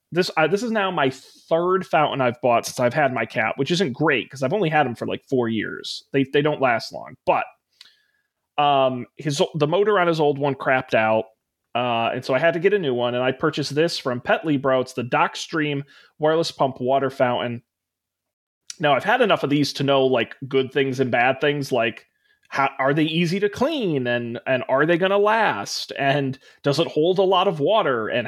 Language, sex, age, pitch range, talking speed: English, male, 30-49, 125-160 Hz, 220 wpm